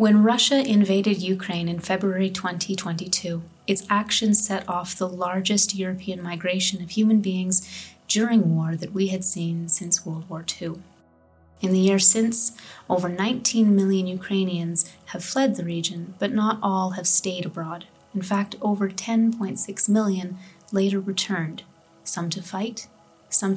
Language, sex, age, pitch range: English, female, 30-49, 180-205 Hz